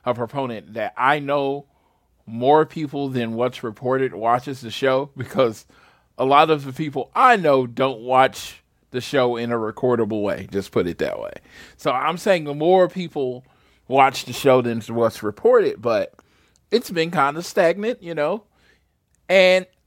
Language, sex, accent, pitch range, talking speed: English, male, American, 115-160 Hz, 165 wpm